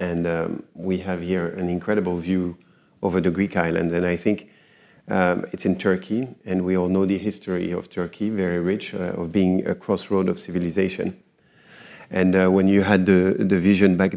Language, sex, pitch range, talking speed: English, male, 90-100 Hz, 190 wpm